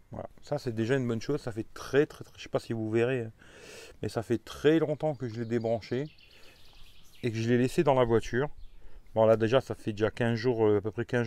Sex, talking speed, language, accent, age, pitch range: male, 255 wpm, French, French, 40-59, 110-135 Hz